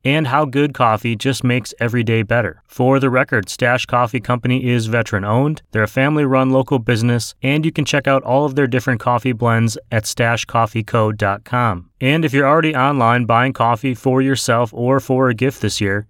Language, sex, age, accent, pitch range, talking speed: English, male, 30-49, American, 110-135 Hz, 185 wpm